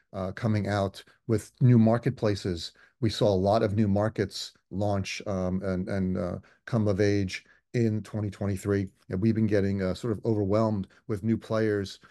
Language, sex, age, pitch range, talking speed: English, male, 30-49, 95-110 Hz, 170 wpm